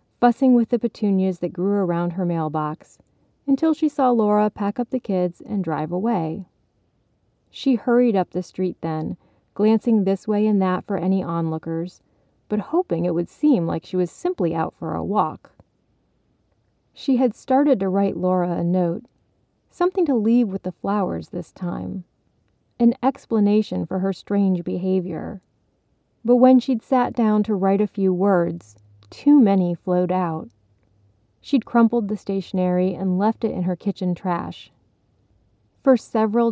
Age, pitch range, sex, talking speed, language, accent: 30-49, 170-220 Hz, female, 160 wpm, English, American